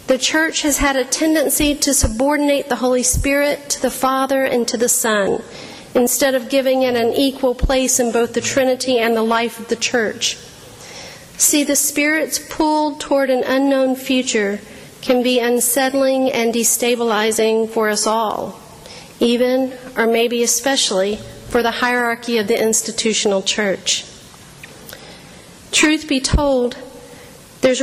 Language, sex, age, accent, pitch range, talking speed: English, female, 40-59, American, 235-270 Hz, 140 wpm